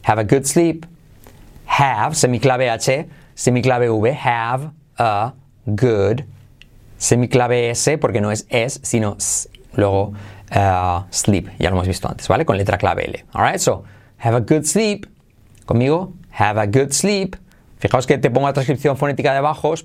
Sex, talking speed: male, 155 wpm